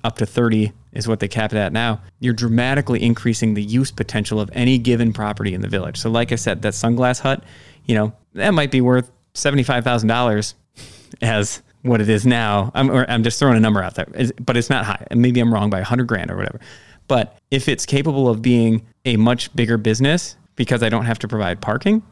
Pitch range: 110-130 Hz